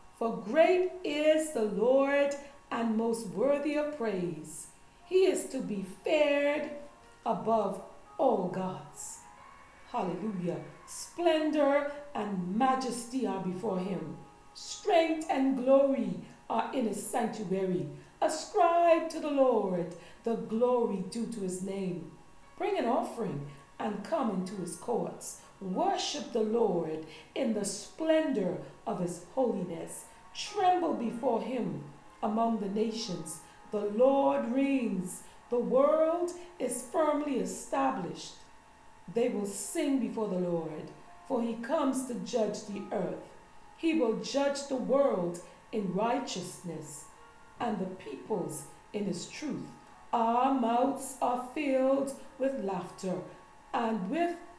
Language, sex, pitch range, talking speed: English, female, 190-275 Hz, 120 wpm